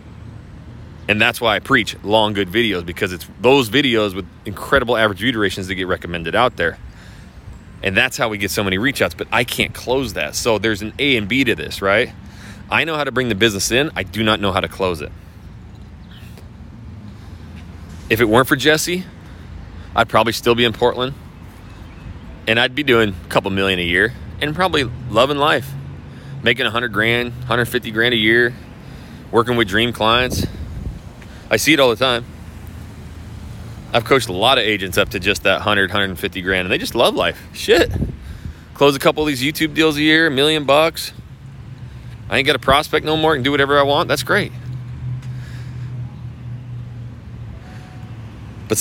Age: 30-49